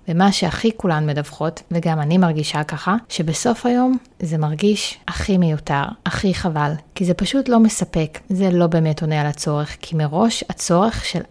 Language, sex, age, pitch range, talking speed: Hebrew, female, 30-49, 160-195 Hz, 165 wpm